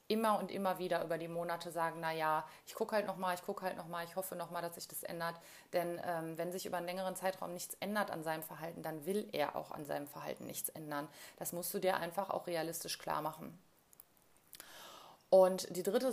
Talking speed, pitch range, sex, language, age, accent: 225 wpm, 165-180 Hz, female, German, 30-49, German